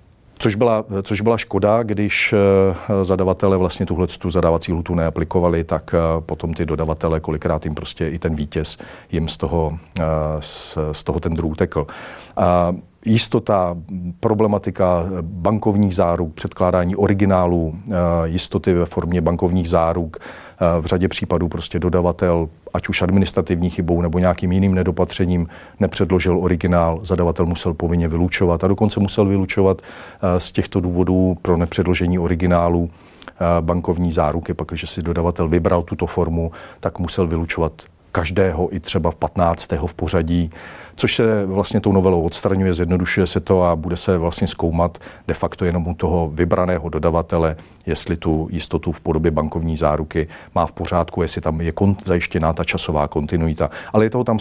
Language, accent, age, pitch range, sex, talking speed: Czech, native, 40-59, 85-95 Hz, male, 150 wpm